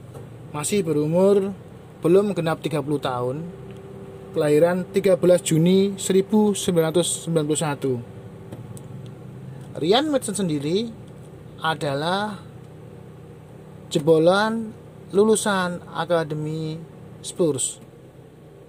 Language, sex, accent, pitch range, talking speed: Indonesian, male, native, 145-180 Hz, 60 wpm